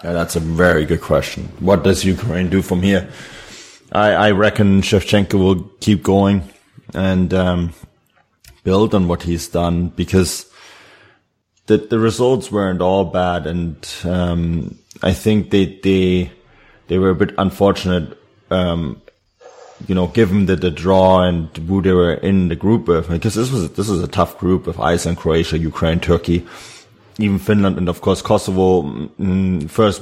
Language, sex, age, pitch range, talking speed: English, male, 20-39, 90-100 Hz, 160 wpm